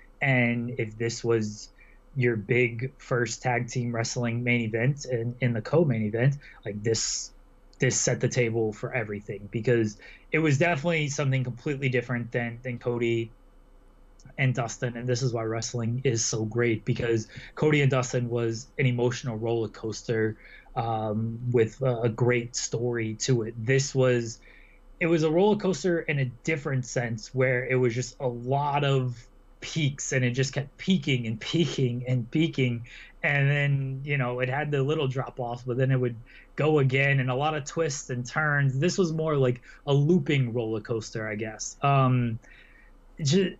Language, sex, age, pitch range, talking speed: English, male, 20-39, 115-140 Hz, 175 wpm